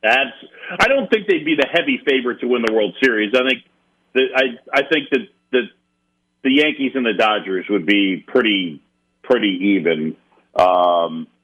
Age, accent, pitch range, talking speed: 50-69, American, 95-130 Hz, 175 wpm